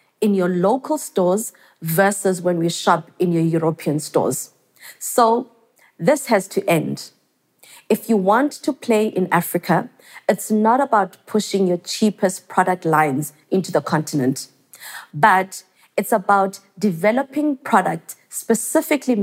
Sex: female